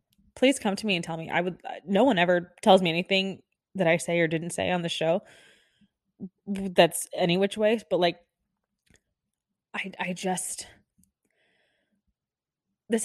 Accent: American